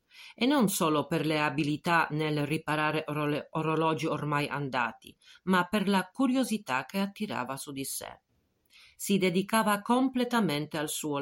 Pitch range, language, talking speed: 140-190 Hz, Italian, 135 wpm